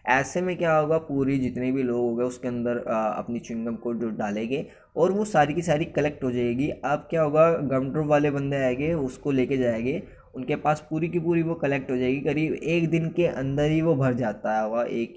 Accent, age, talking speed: native, 20-39, 235 wpm